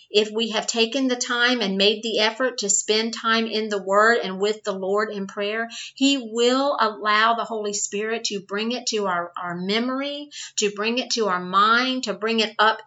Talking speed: 210 wpm